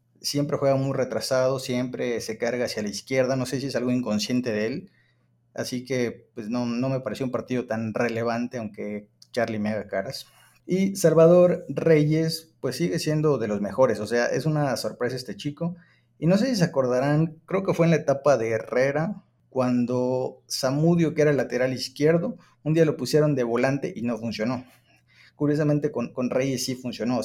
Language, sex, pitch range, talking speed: Spanish, male, 120-150 Hz, 190 wpm